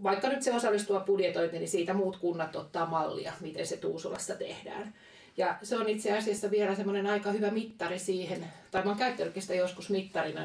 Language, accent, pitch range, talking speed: Finnish, native, 170-205 Hz, 185 wpm